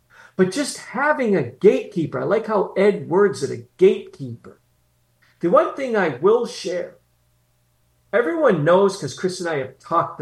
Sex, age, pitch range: male, 50-69, 125-175 Hz